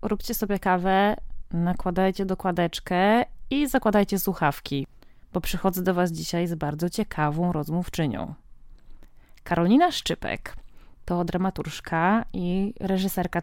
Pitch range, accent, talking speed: 175-240 Hz, native, 105 wpm